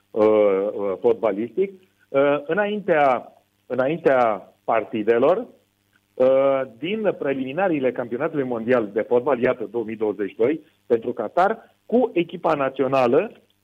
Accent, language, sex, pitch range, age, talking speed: native, Romanian, male, 120-155 Hz, 40-59, 75 wpm